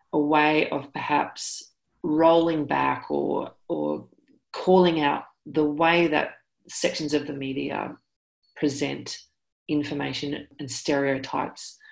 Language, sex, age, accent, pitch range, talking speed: English, female, 40-59, Australian, 135-170 Hz, 105 wpm